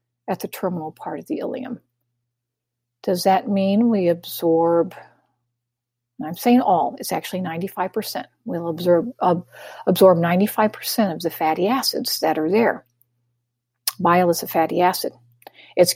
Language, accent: English, American